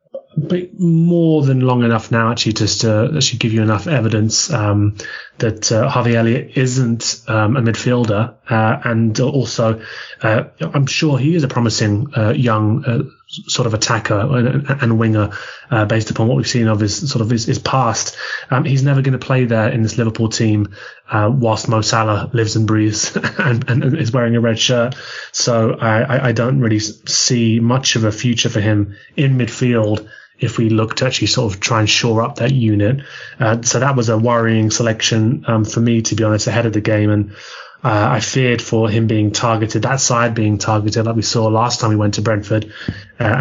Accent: British